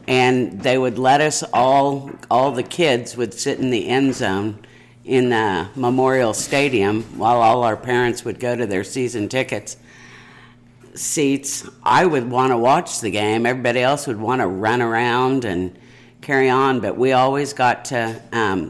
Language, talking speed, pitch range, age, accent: English, 170 wpm, 115-135 Hz, 50-69, American